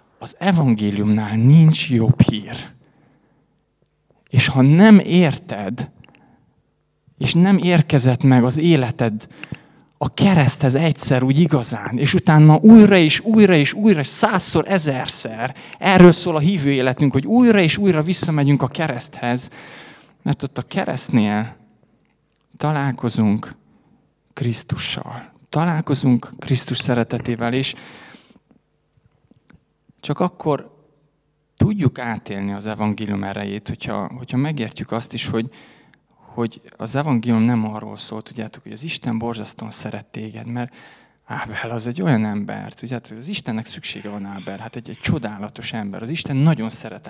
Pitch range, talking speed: 115-160 Hz, 125 wpm